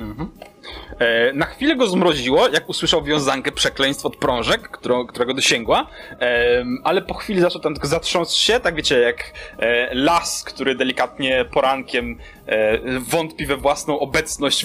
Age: 20-39